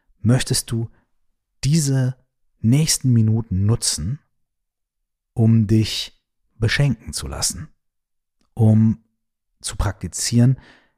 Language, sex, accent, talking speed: German, male, German, 75 wpm